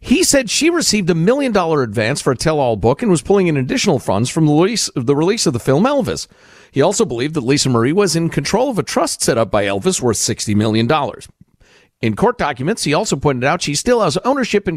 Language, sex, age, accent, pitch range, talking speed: English, male, 50-69, American, 125-200 Hz, 230 wpm